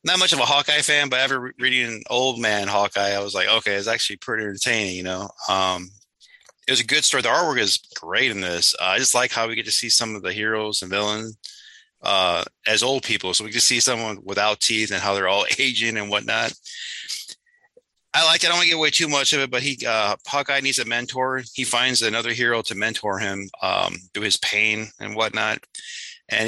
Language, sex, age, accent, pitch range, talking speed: English, male, 30-49, American, 105-135 Hz, 235 wpm